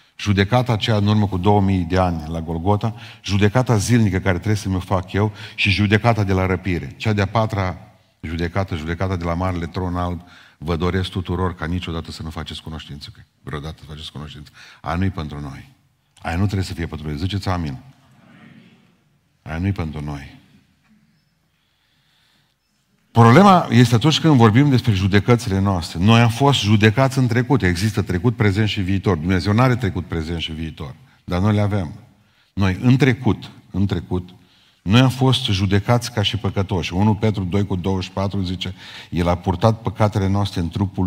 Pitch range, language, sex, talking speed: 90-110 Hz, Romanian, male, 170 wpm